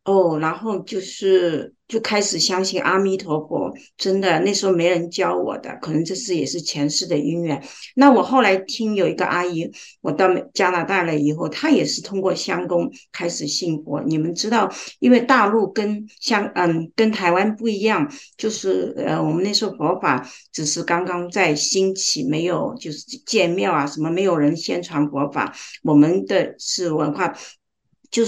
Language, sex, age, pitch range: Chinese, female, 50-69, 165-200 Hz